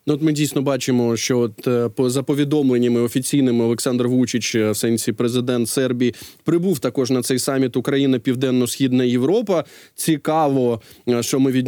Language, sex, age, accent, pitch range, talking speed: Ukrainian, male, 20-39, native, 130-160 Hz, 145 wpm